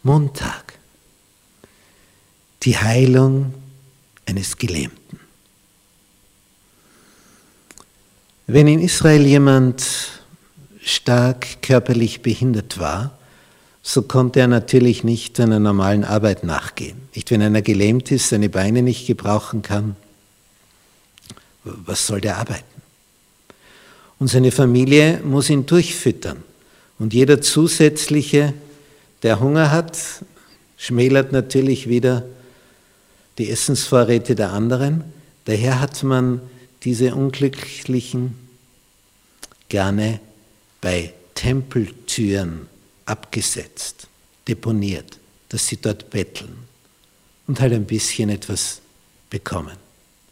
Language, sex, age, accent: German, male, 60-79, Austrian